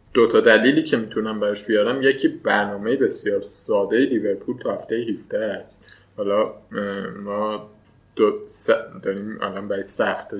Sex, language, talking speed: male, Persian, 145 wpm